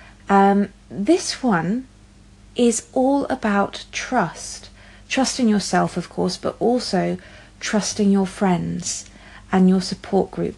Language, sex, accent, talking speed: English, female, British, 115 wpm